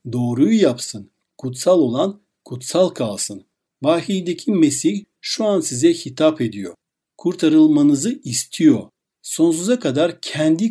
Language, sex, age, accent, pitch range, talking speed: Turkish, male, 60-79, native, 125-205 Hz, 100 wpm